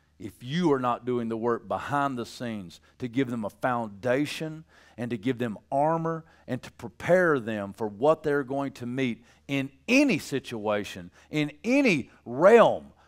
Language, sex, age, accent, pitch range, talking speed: English, male, 50-69, American, 110-150 Hz, 165 wpm